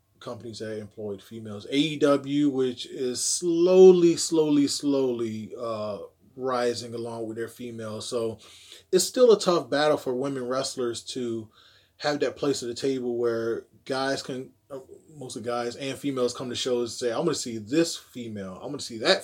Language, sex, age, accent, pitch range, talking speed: English, male, 20-39, American, 110-135 Hz, 170 wpm